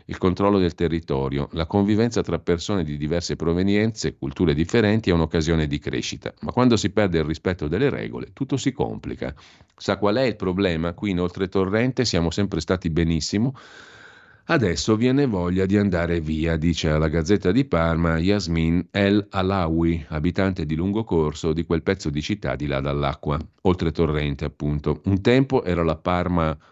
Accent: native